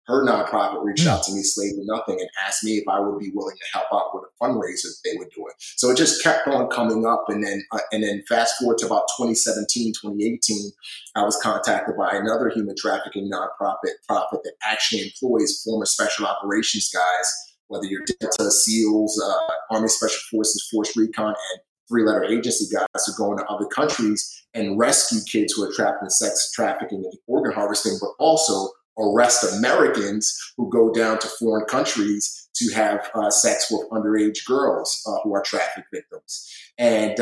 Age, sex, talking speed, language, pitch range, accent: 30-49, male, 190 wpm, English, 105-155 Hz, American